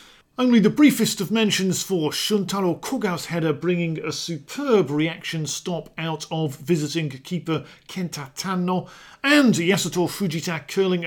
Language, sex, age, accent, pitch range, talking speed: English, male, 40-59, British, 155-210 Hz, 130 wpm